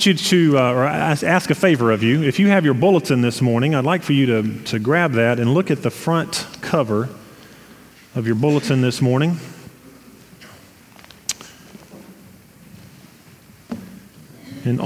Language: English